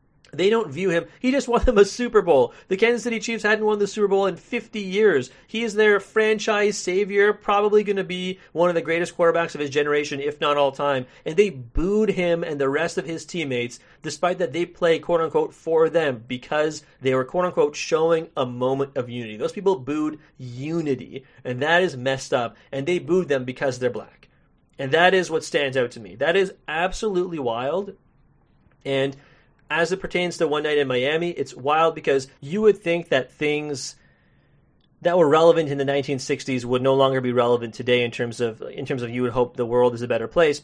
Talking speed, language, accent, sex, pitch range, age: 215 wpm, English, American, male, 130-180 Hz, 40-59